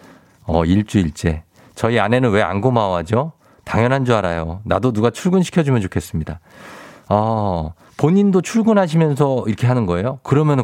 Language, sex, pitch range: Korean, male, 90-130 Hz